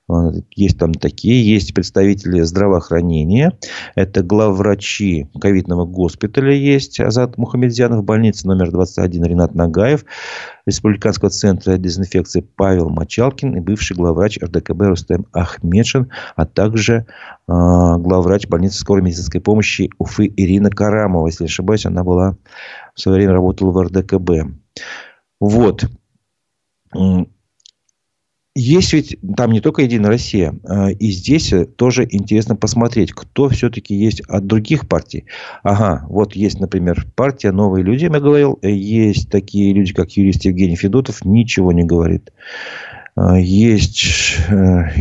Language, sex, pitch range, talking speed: Russian, male, 90-105 Hz, 120 wpm